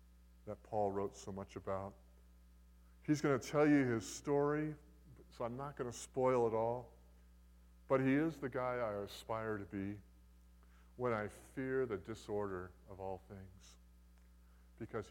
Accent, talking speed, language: American, 155 wpm, English